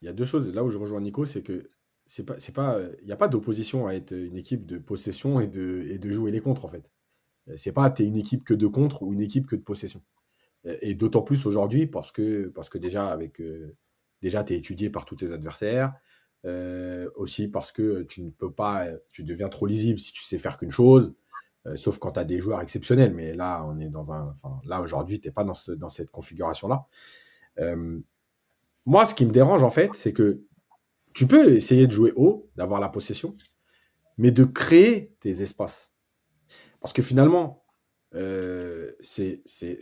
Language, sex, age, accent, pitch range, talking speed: French, male, 30-49, French, 95-130 Hz, 215 wpm